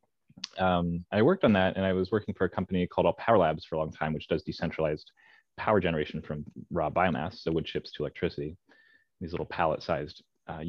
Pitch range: 85-100 Hz